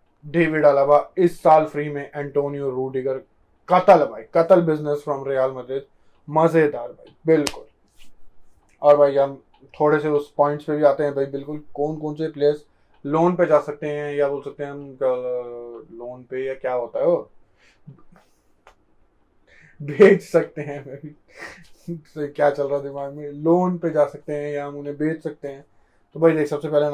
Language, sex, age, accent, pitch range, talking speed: Hindi, male, 20-39, native, 130-150 Hz, 145 wpm